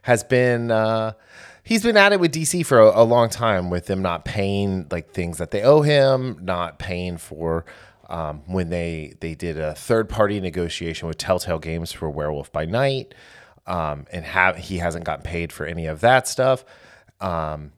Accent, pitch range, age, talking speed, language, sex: American, 85-120 Hz, 30-49, 190 wpm, English, male